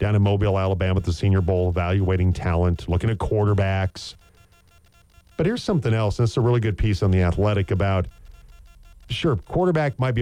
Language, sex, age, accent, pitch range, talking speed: English, male, 40-59, American, 90-115 Hz, 180 wpm